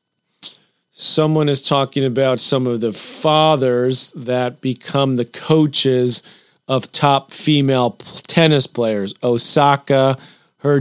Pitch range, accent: 125-145 Hz, American